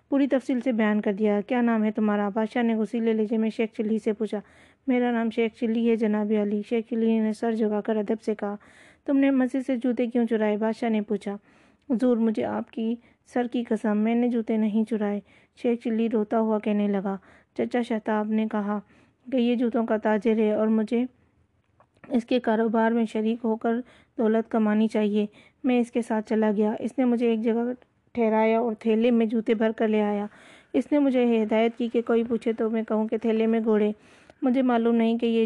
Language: Urdu